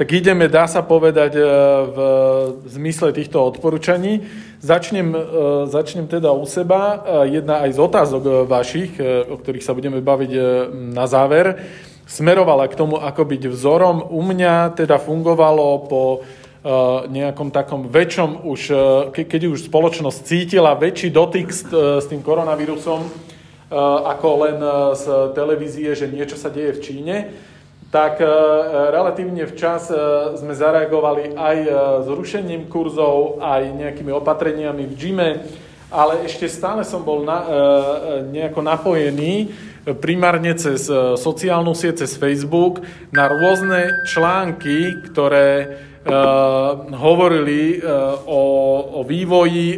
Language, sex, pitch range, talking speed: Slovak, male, 140-170 Hz, 115 wpm